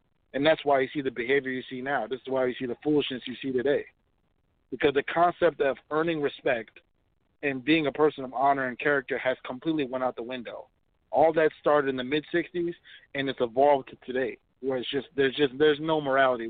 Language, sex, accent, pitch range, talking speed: English, male, American, 130-150 Hz, 220 wpm